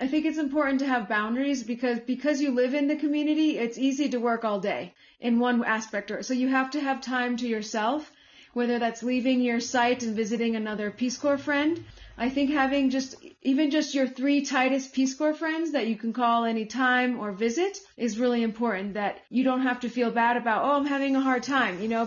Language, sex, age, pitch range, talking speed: English, female, 30-49, 225-275 Hz, 215 wpm